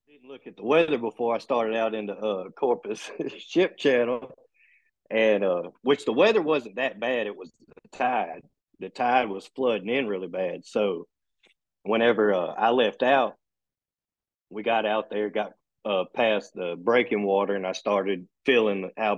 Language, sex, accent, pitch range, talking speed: English, male, American, 105-140 Hz, 170 wpm